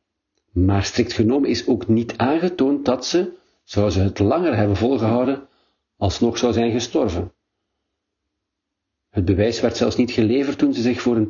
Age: 50-69